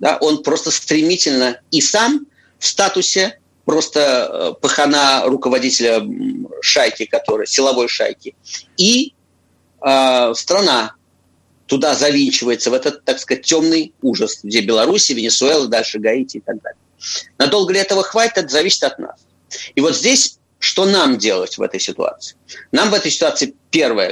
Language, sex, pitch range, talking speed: Russian, male, 125-200 Hz, 140 wpm